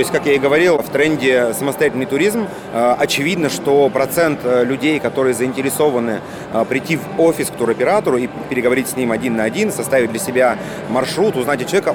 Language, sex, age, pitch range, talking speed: Russian, male, 30-49, 125-155 Hz, 185 wpm